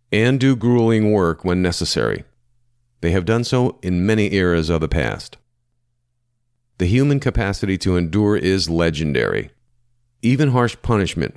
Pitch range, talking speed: 90-120 Hz, 135 wpm